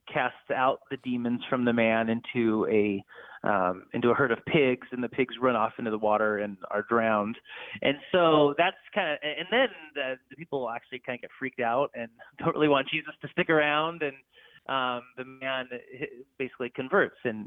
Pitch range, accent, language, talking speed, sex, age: 115-135 Hz, American, English, 195 wpm, male, 30-49